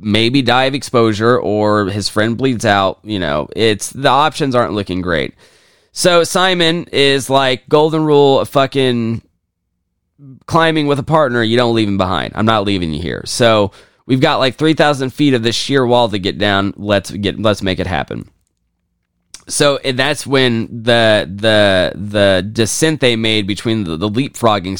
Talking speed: 170 wpm